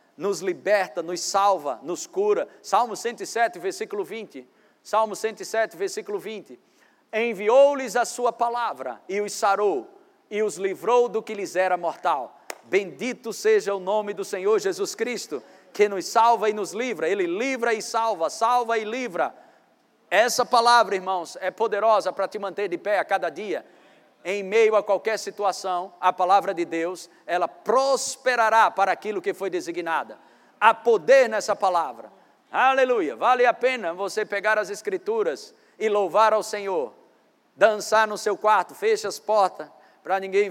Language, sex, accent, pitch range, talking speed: Portuguese, male, Brazilian, 195-270 Hz, 155 wpm